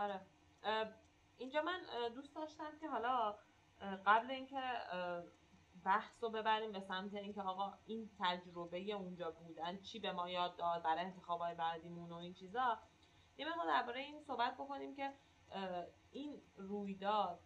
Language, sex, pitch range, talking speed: Persian, female, 180-230 Hz, 140 wpm